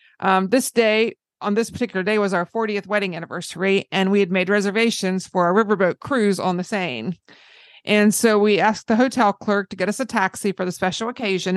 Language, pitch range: English, 185-220 Hz